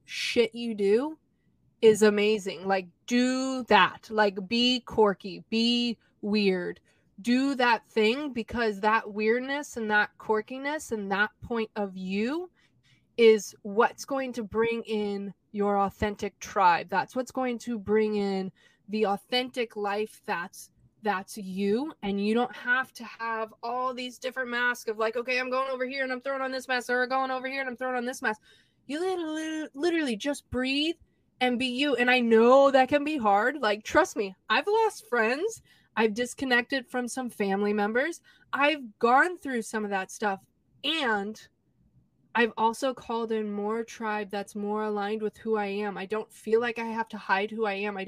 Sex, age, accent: female, 20-39, American